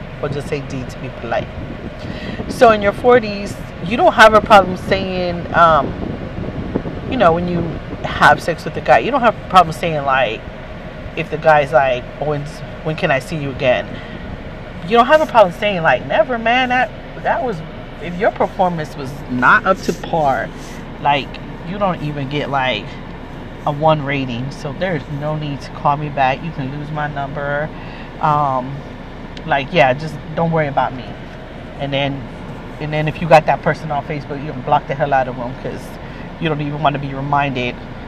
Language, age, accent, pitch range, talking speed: English, 40-59, American, 140-180 Hz, 195 wpm